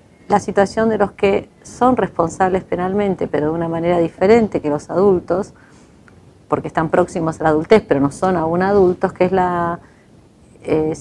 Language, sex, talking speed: Spanish, female, 170 wpm